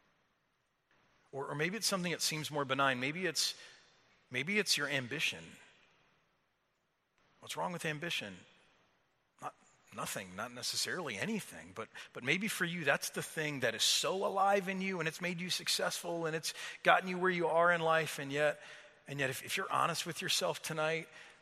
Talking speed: 185 wpm